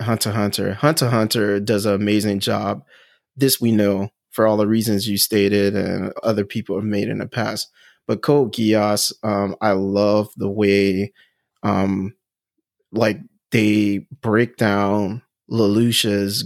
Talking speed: 140 wpm